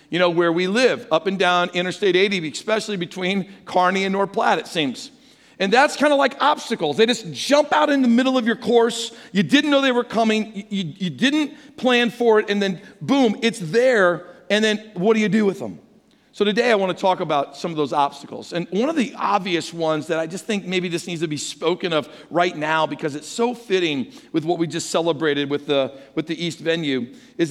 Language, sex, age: English, male, 50-69